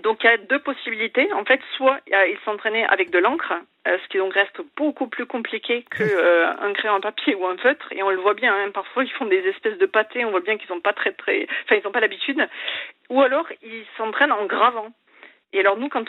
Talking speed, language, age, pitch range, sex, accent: 240 wpm, French, 40-59, 205-300 Hz, female, French